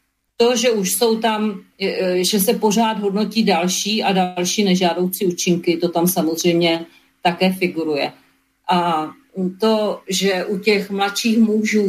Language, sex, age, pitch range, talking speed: Slovak, female, 40-59, 180-210 Hz, 130 wpm